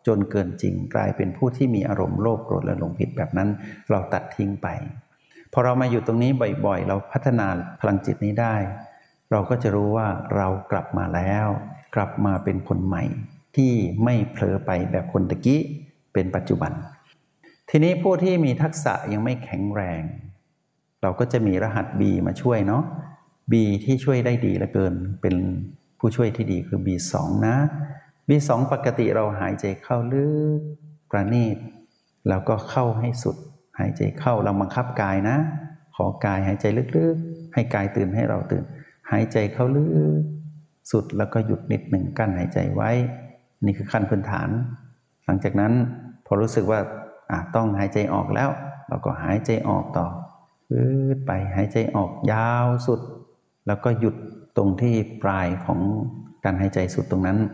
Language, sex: Thai, male